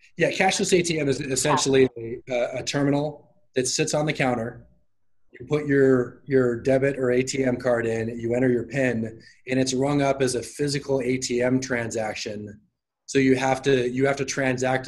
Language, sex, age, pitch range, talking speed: English, male, 20-39, 120-140 Hz, 175 wpm